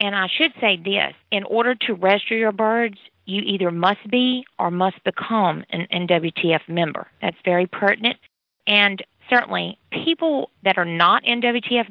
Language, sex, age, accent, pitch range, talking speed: English, female, 40-59, American, 180-220 Hz, 155 wpm